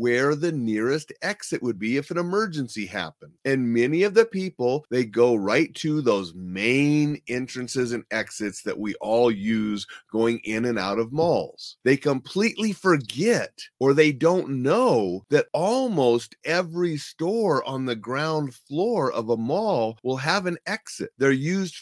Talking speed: 160 wpm